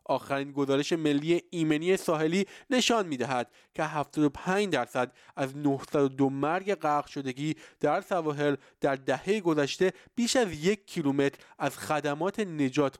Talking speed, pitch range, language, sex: 125 wpm, 135-175 Hz, Persian, male